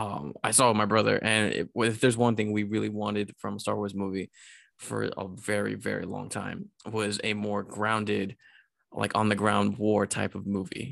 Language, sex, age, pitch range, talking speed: English, male, 20-39, 105-120 Hz, 190 wpm